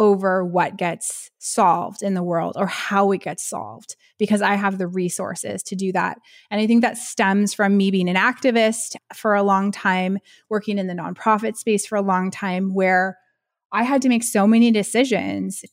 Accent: American